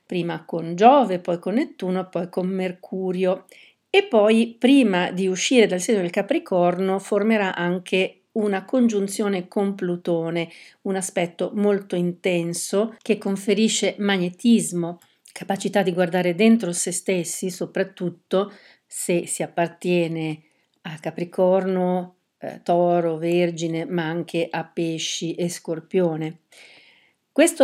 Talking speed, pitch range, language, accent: 115 wpm, 170-200 Hz, Italian, native